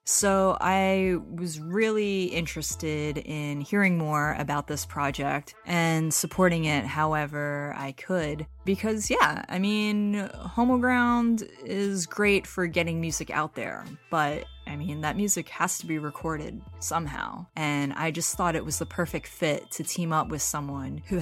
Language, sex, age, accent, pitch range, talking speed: English, female, 20-39, American, 150-185 Hz, 155 wpm